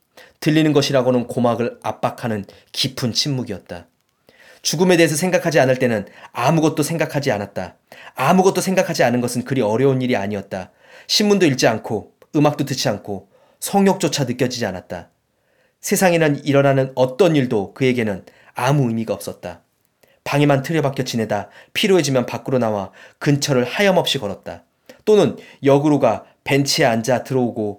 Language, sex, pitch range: Korean, male, 120-150 Hz